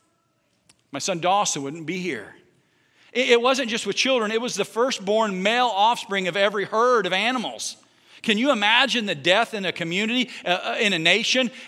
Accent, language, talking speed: American, English, 170 wpm